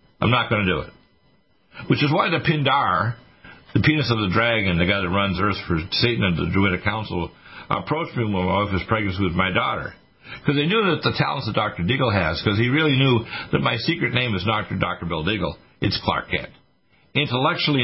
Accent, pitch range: American, 100-135 Hz